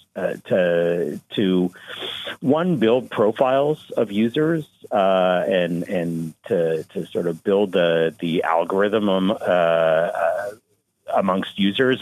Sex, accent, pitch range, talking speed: male, American, 85-115 Hz, 115 wpm